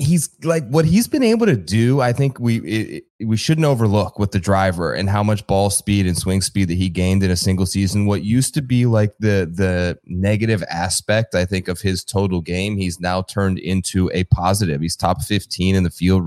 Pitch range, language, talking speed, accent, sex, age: 90-110 Hz, English, 220 wpm, American, male, 20-39